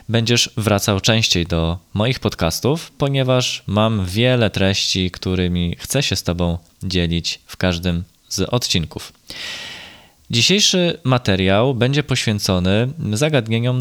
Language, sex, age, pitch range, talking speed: Polish, male, 20-39, 95-120 Hz, 110 wpm